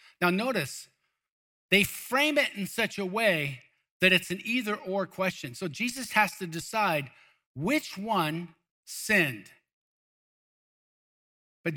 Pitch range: 170-215 Hz